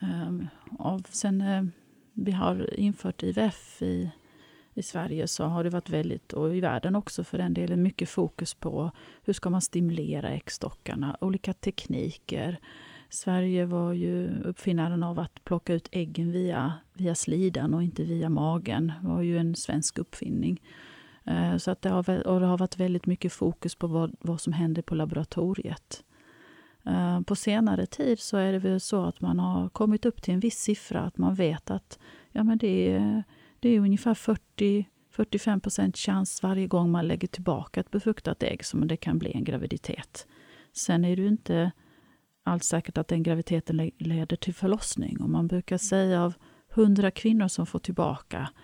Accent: native